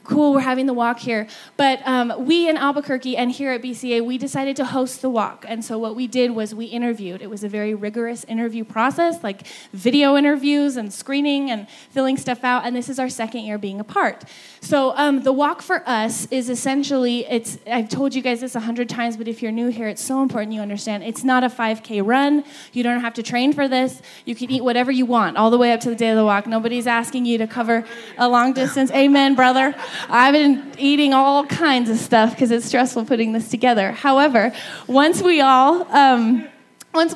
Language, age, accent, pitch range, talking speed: English, 10-29, American, 225-265 Hz, 220 wpm